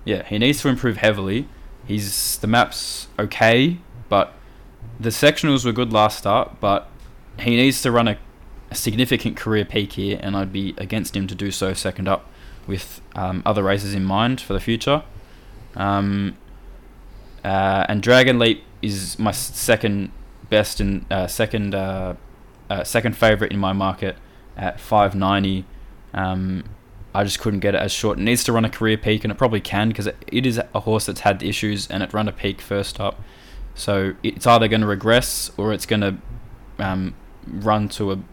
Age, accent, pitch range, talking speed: 20-39, Australian, 95-115 Hz, 185 wpm